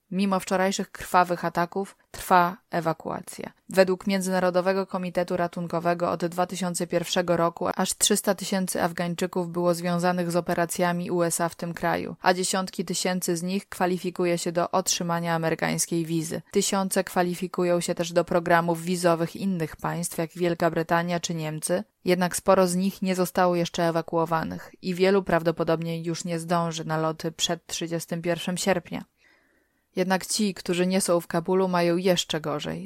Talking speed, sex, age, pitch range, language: 145 wpm, female, 20-39, 170-185 Hz, Polish